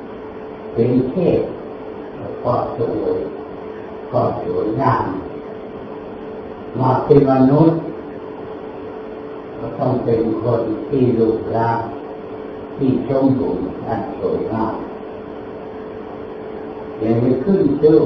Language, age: Thai, 40-59